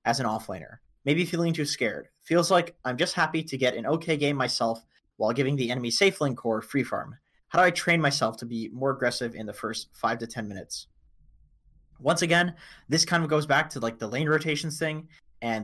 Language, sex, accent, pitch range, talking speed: English, male, American, 125-160 Hz, 220 wpm